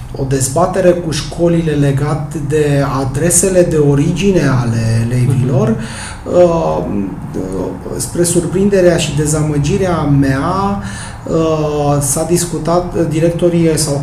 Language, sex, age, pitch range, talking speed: Romanian, male, 30-49, 145-175 Hz, 85 wpm